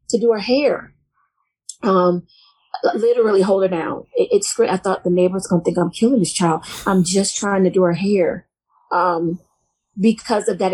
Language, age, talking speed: English, 30-49, 185 wpm